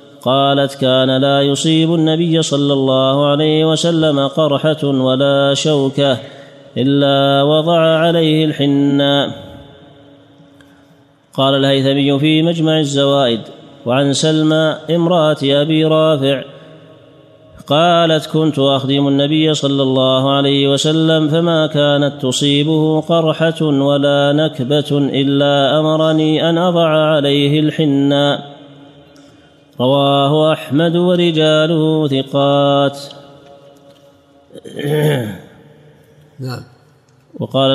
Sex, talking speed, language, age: male, 80 wpm, Arabic, 30-49